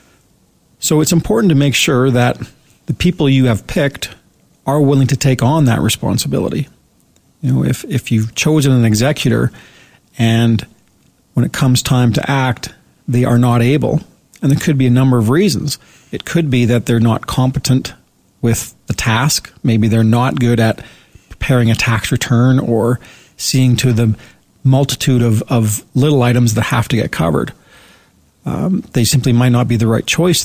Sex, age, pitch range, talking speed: male, 40-59, 115-135 Hz, 175 wpm